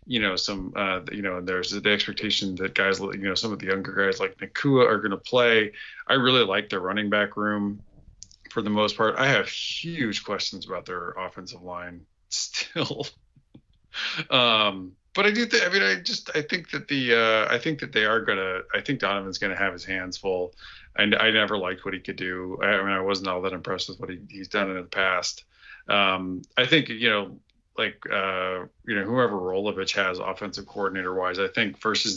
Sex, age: male, 30-49